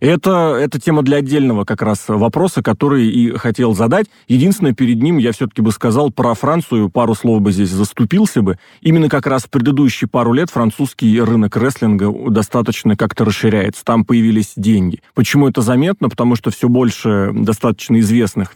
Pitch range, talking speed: 110-140 Hz, 170 wpm